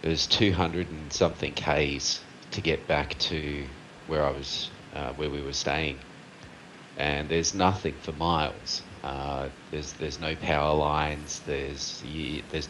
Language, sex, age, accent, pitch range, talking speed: English, male, 30-49, Australian, 75-90 Hz, 150 wpm